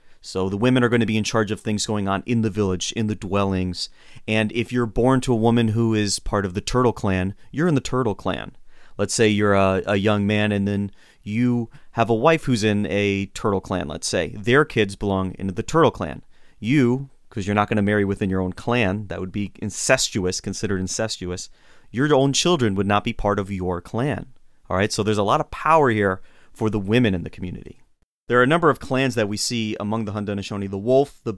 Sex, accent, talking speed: male, American, 235 wpm